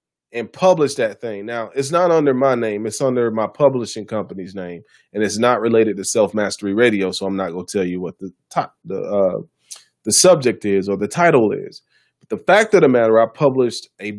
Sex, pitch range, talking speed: male, 105-145 Hz, 205 wpm